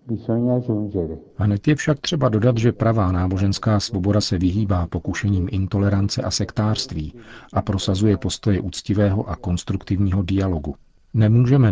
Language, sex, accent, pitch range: Czech, male, native, 90-105 Hz